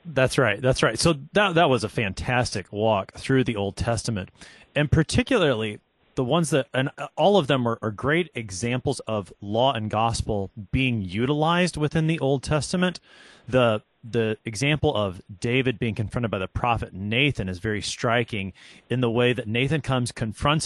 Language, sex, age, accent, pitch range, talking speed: English, male, 30-49, American, 110-145 Hz, 170 wpm